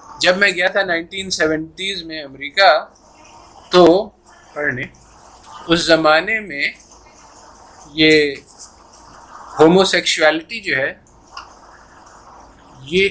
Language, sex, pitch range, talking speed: Urdu, male, 135-200 Hz, 85 wpm